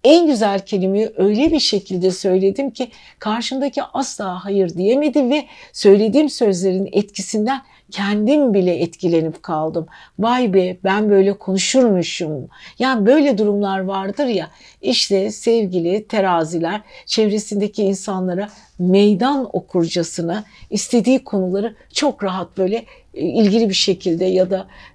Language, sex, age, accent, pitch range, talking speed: Turkish, female, 60-79, native, 185-235 Hz, 115 wpm